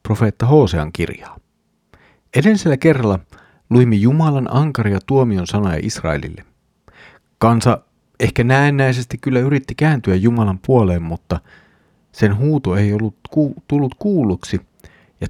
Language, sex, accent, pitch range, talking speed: Finnish, male, native, 100-120 Hz, 105 wpm